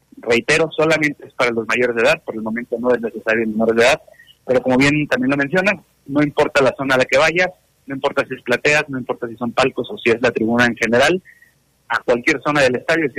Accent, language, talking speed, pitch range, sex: Mexican, Spanish, 250 wpm, 120-150 Hz, male